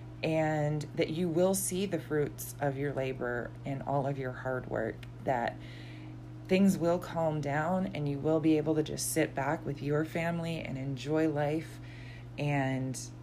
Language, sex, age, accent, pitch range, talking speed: English, female, 20-39, American, 120-155 Hz, 170 wpm